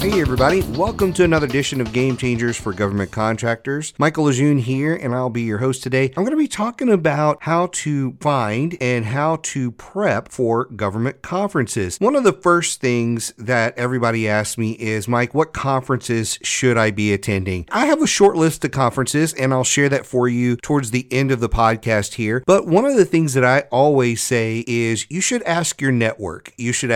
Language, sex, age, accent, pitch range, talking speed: English, male, 40-59, American, 120-170 Hz, 205 wpm